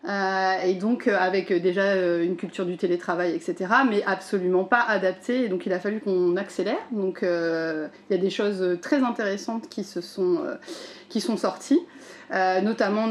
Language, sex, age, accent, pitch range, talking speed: French, female, 30-49, French, 185-230 Hz, 160 wpm